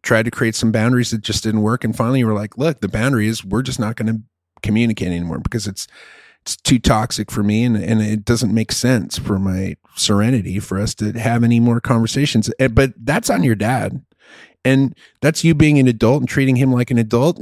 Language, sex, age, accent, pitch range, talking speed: English, male, 30-49, American, 105-130 Hz, 225 wpm